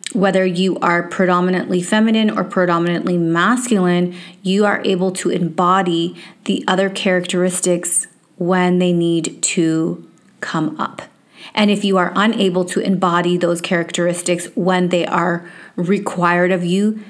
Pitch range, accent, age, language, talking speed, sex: 175-200 Hz, American, 30-49, English, 130 wpm, female